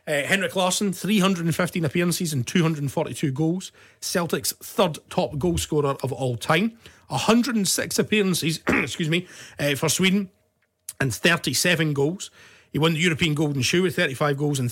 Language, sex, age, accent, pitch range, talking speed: English, male, 30-49, British, 120-170 Hz, 135 wpm